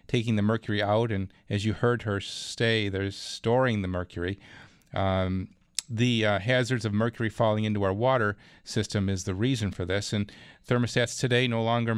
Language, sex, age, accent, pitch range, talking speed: English, male, 40-59, American, 100-120 Hz, 175 wpm